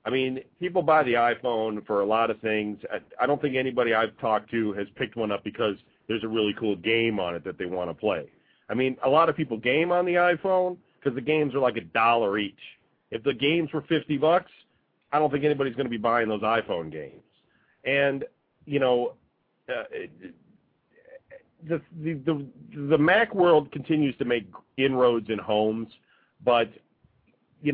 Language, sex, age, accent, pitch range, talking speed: English, male, 40-59, American, 115-155 Hz, 195 wpm